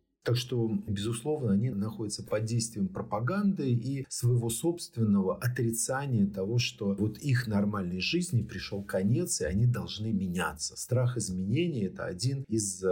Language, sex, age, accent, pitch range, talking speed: Russian, male, 50-69, native, 100-120 Hz, 135 wpm